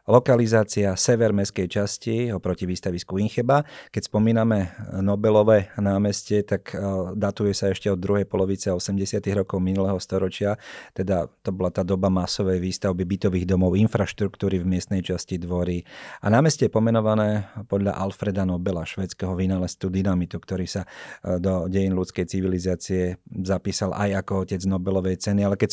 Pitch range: 90-100 Hz